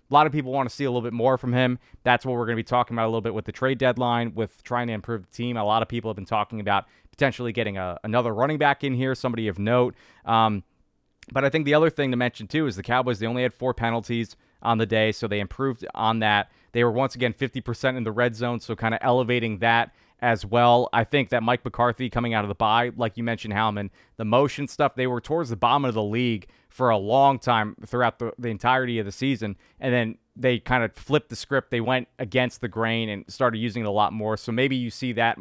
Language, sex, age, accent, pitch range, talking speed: English, male, 20-39, American, 110-130 Hz, 265 wpm